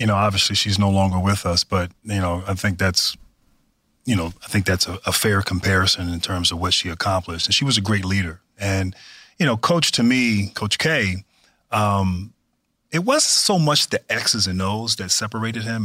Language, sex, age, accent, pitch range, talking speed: English, male, 30-49, American, 95-115 Hz, 210 wpm